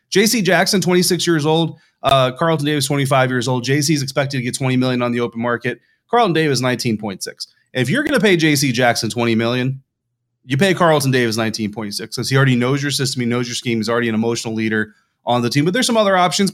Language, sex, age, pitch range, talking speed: English, male, 30-49, 120-150 Hz, 240 wpm